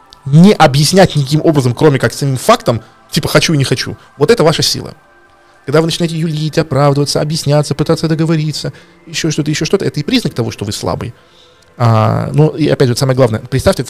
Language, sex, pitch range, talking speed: Russian, male, 115-155 Hz, 190 wpm